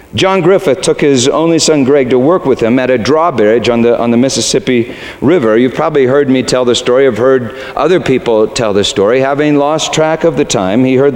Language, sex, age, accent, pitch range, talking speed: English, male, 50-69, American, 90-150 Hz, 225 wpm